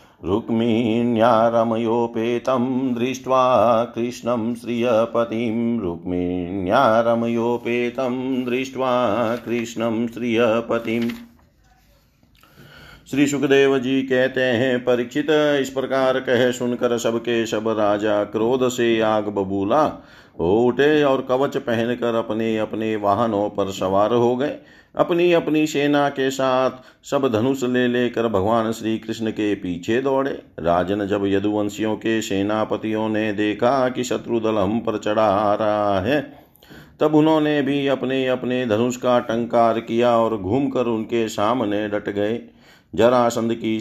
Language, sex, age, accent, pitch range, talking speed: Hindi, male, 50-69, native, 110-125 Hz, 115 wpm